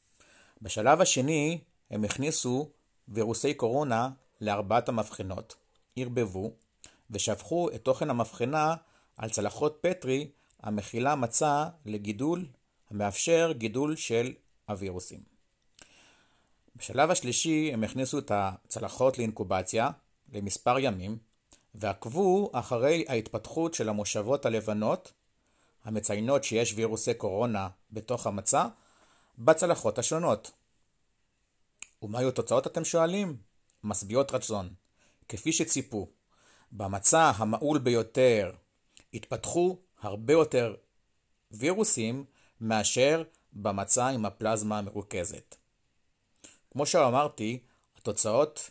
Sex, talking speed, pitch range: male, 85 wpm, 105-145 Hz